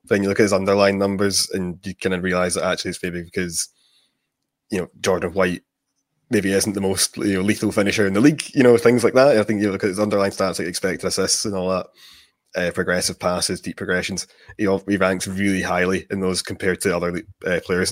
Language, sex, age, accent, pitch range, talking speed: English, male, 20-39, British, 90-100 Hz, 235 wpm